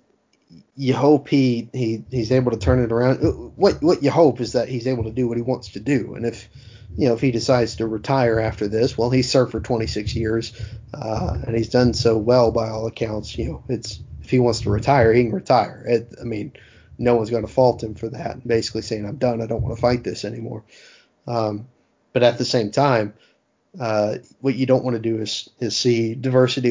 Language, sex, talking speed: English, male, 225 wpm